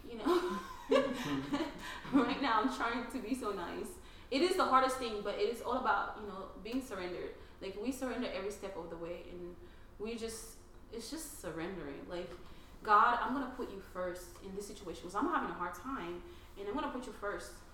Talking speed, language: 205 wpm, English